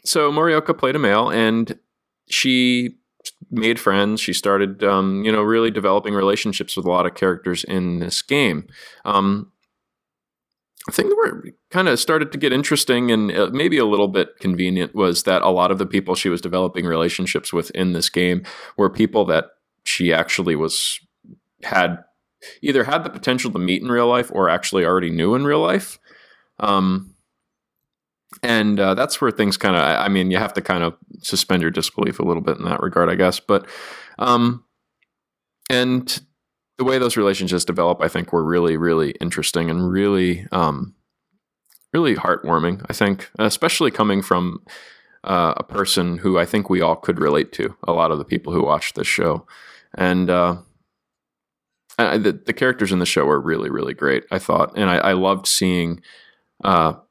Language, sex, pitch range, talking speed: English, male, 90-115 Hz, 180 wpm